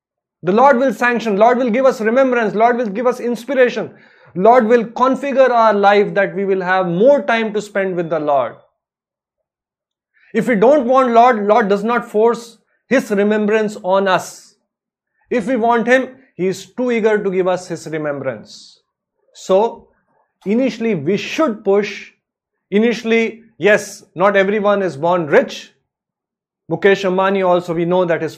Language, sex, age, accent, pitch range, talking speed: English, male, 20-39, Indian, 175-230 Hz, 160 wpm